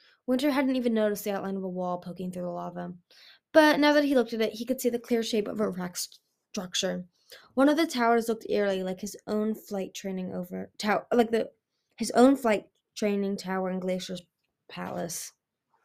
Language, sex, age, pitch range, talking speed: English, female, 10-29, 185-245 Hz, 200 wpm